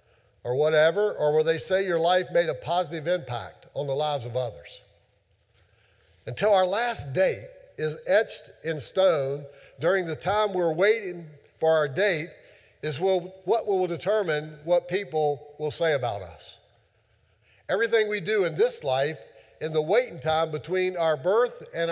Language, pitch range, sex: English, 125-185 Hz, male